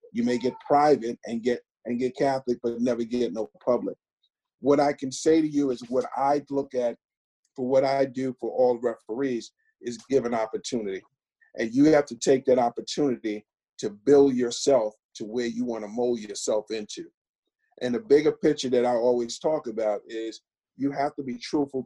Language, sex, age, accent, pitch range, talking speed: English, male, 40-59, American, 115-145 Hz, 190 wpm